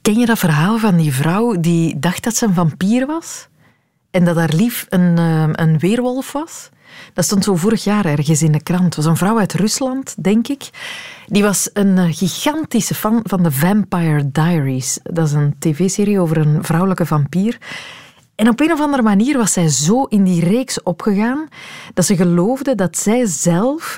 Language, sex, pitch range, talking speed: Dutch, female, 165-225 Hz, 190 wpm